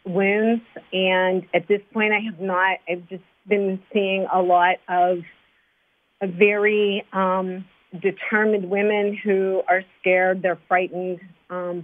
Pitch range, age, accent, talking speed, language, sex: 180-195 Hz, 40-59, American, 125 wpm, English, female